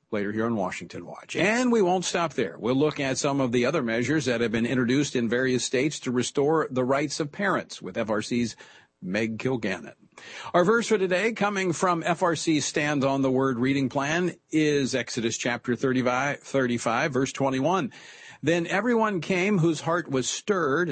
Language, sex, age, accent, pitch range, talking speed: English, male, 50-69, American, 120-170 Hz, 175 wpm